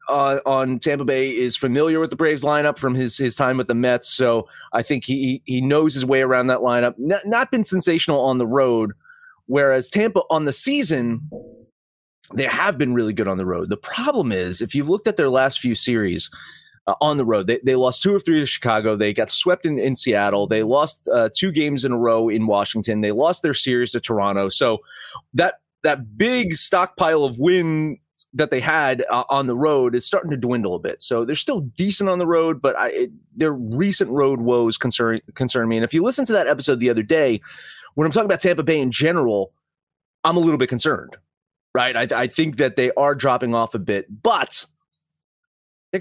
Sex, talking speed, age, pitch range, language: male, 215 wpm, 30-49, 120-160 Hz, English